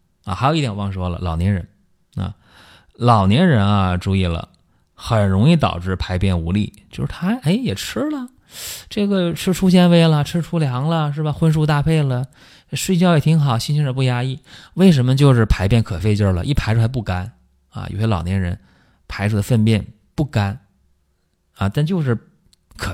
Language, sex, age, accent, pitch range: Chinese, male, 20-39, native, 90-125 Hz